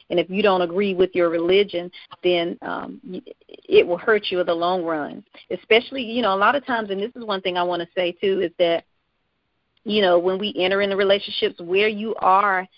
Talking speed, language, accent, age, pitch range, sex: 220 wpm, English, American, 40-59, 180-215 Hz, female